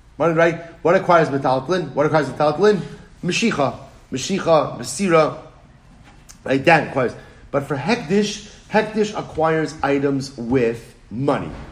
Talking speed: 120 wpm